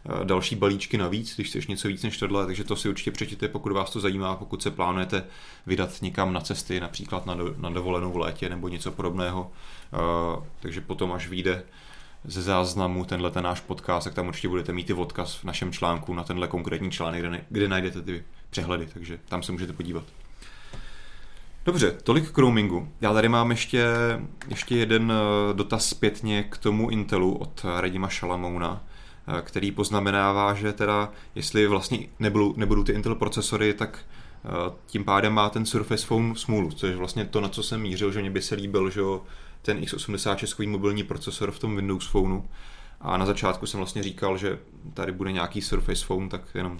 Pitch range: 90-105 Hz